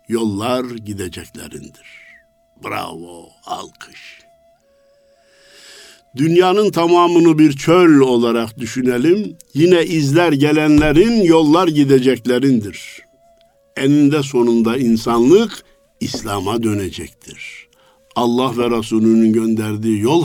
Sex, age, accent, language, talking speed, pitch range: male, 60-79, native, Turkish, 75 wpm, 115-165 Hz